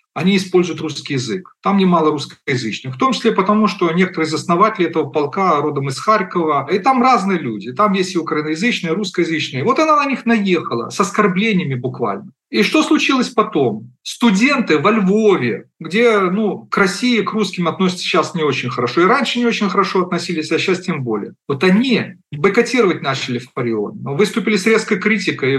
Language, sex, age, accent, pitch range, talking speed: Russian, male, 40-59, native, 155-205 Hz, 175 wpm